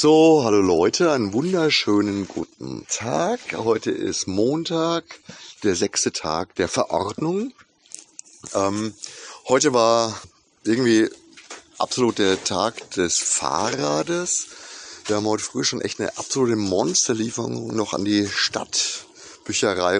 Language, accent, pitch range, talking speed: German, German, 100-145 Hz, 110 wpm